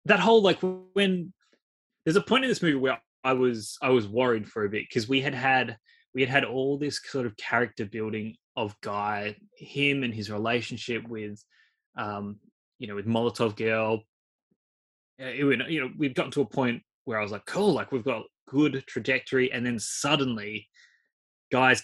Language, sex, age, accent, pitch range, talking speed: English, male, 20-39, Australian, 110-140 Hz, 185 wpm